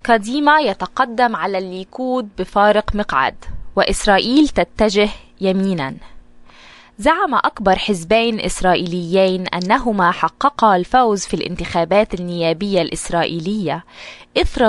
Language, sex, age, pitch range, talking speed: Arabic, female, 20-39, 180-225 Hz, 85 wpm